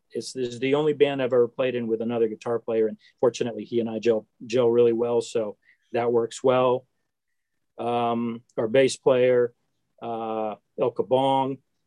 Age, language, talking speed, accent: 40-59, English, 165 wpm, American